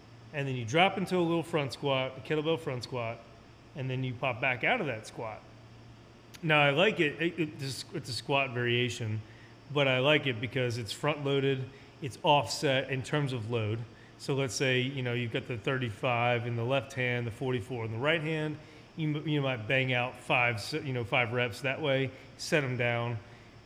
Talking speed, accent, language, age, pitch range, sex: 200 wpm, American, English, 30-49, 115-145 Hz, male